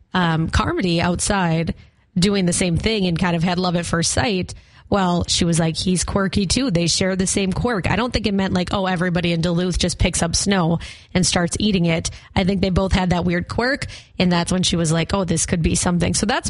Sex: female